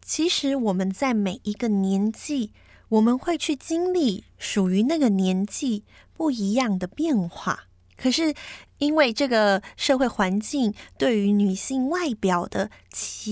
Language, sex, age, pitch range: Chinese, female, 20-39, 200-275 Hz